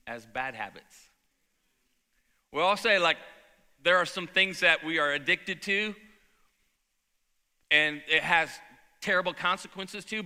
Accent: American